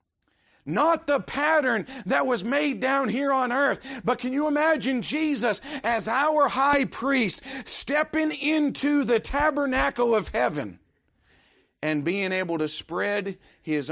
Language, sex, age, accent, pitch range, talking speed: English, male, 50-69, American, 165-265 Hz, 135 wpm